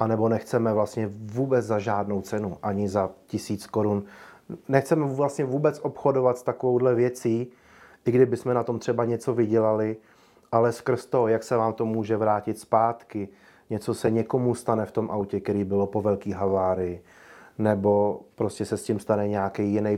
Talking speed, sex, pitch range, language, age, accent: 170 wpm, male, 95-110 Hz, Czech, 30-49, native